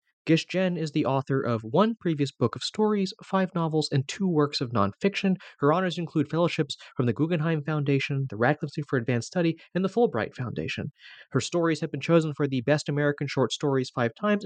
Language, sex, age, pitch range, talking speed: English, male, 30-49, 125-175 Hz, 205 wpm